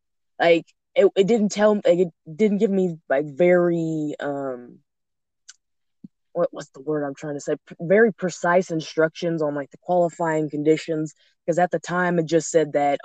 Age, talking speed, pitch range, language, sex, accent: 20-39, 175 wpm, 145-170 Hz, English, female, American